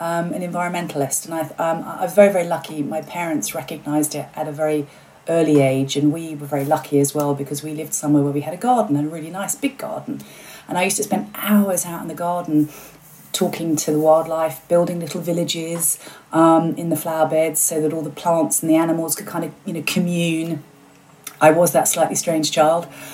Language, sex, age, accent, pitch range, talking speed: English, female, 30-49, British, 155-200 Hz, 220 wpm